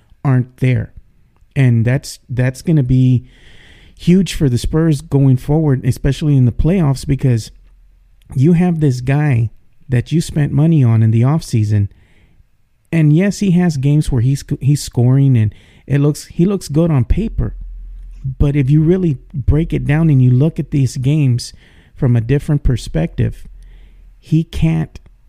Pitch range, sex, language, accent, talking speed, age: 120-150 Hz, male, English, American, 160 wpm, 40-59